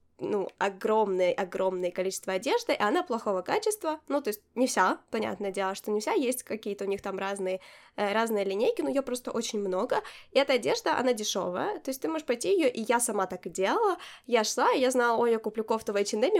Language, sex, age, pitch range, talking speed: Ukrainian, female, 20-39, 195-265 Hz, 215 wpm